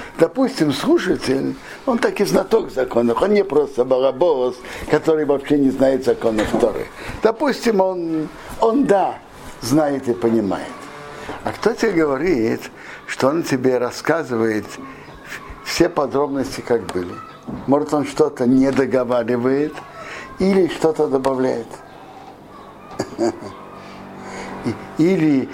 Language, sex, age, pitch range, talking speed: Russian, male, 60-79, 130-175 Hz, 105 wpm